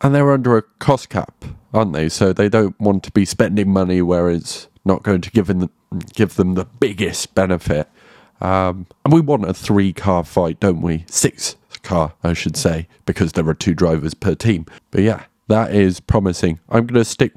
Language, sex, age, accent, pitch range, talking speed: English, male, 30-49, British, 90-110 Hz, 195 wpm